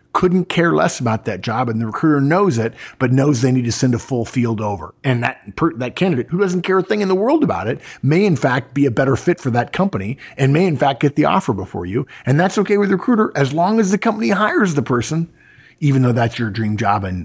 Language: English